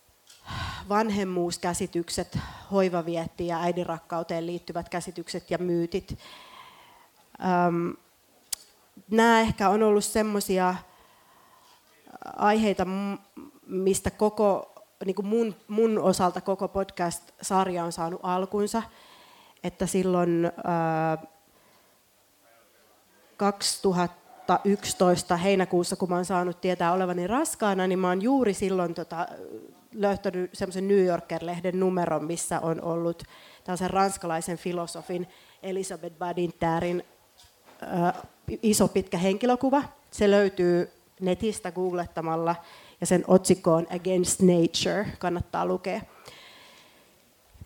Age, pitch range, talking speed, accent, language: 30-49, 175-205 Hz, 85 wpm, native, Finnish